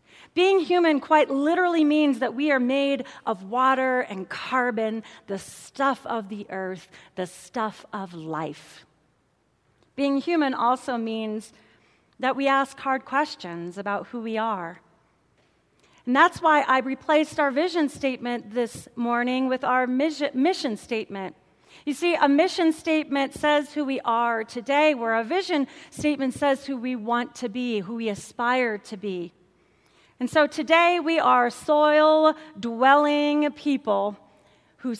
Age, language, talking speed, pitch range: 40-59, English, 140 wpm, 215-295 Hz